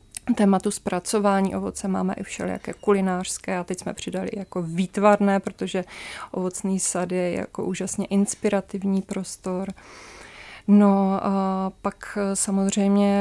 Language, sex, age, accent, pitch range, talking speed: Czech, female, 20-39, native, 190-205 Hz, 115 wpm